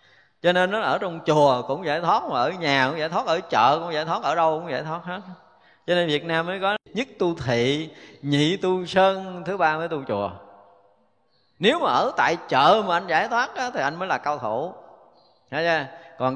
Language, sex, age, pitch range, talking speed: Vietnamese, male, 20-39, 115-165 Hz, 225 wpm